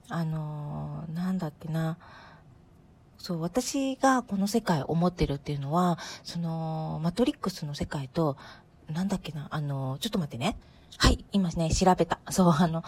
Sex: female